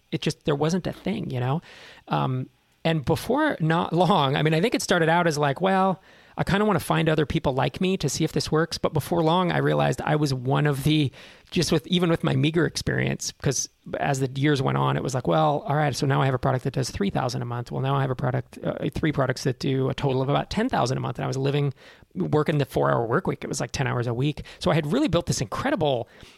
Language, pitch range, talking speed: English, 130-165 Hz, 275 wpm